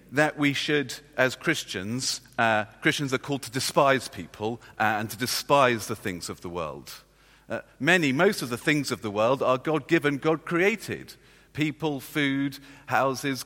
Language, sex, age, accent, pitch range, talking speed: English, male, 40-59, British, 125-160 Hz, 155 wpm